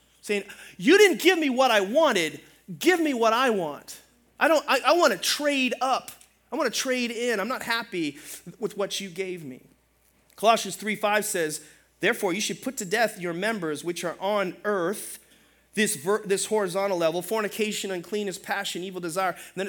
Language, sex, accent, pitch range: English, male, American, 195-255 Hz